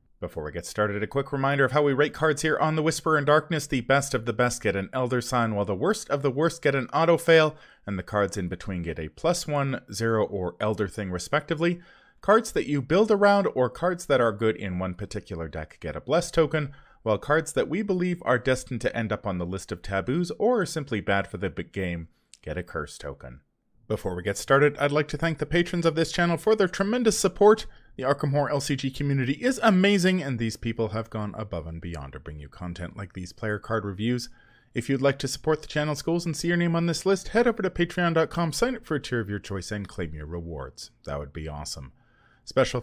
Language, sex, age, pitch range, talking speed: English, male, 30-49, 100-160 Hz, 240 wpm